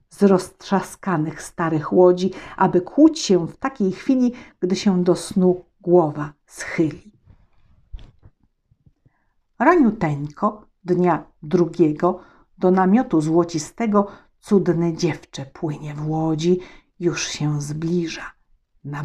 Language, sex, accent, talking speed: Polish, female, native, 100 wpm